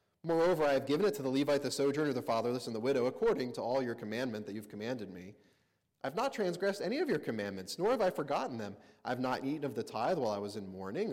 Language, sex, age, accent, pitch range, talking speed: English, male, 30-49, American, 110-140 Hz, 255 wpm